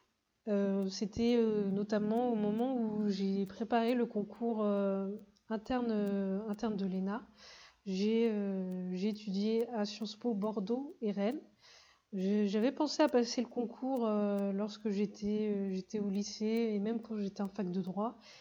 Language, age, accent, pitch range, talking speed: French, 20-39, French, 205-235 Hz, 160 wpm